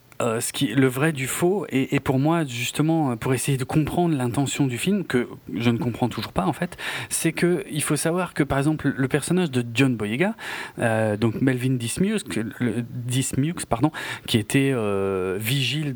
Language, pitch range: French, 115-150 Hz